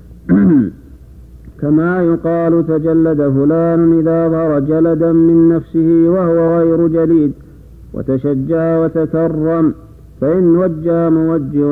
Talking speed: 85 wpm